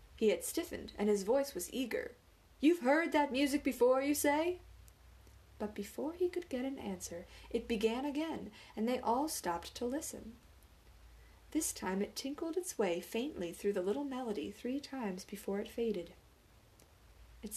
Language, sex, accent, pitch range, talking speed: English, female, American, 200-290 Hz, 165 wpm